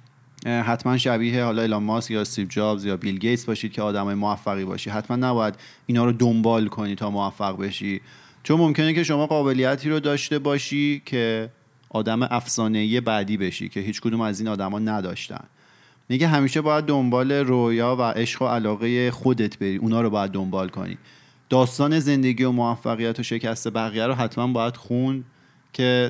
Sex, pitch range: male, 105-130 Hz